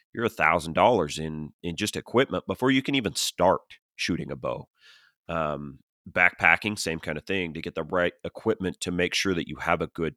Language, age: English, 30-49